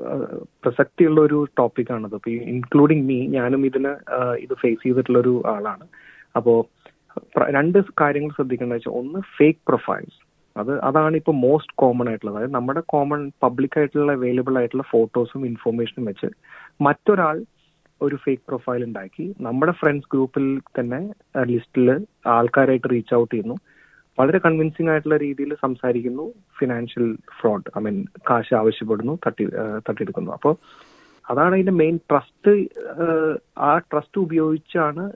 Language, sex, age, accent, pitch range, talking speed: Malayalam, male, 30-49, native, 125-165 Hz, 120 wpm